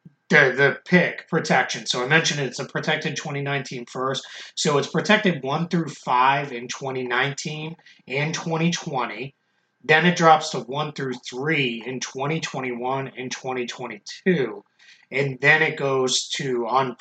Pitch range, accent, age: 125-165 Hz, American, 30-49